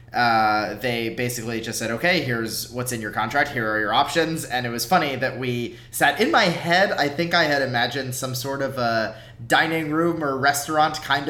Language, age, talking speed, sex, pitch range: English, 20-39, 205 wpm, male, 120-150 Hz